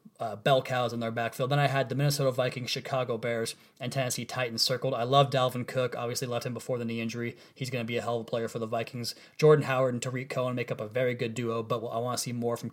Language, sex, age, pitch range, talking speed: English, male, 20-39, 120-140 Hz, 280 wpm